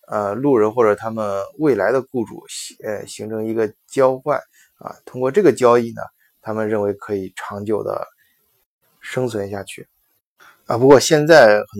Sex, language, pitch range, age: male, Chinese, 105-150 Hz, 20-39